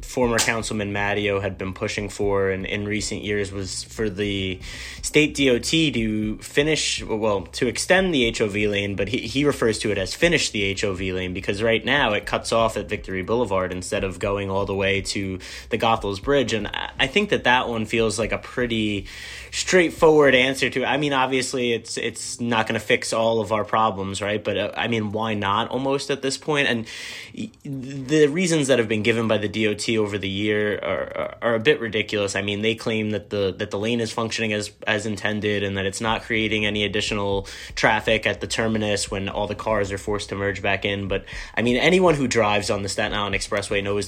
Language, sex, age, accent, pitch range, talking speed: English, male, 20-39, American, 100-125 Hz, 215 wpm